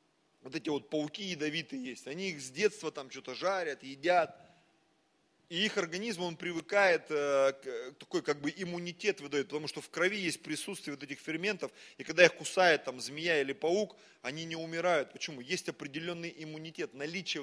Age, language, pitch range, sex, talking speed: 30-49, Russian, 160-215 Hz, male, 170 wpm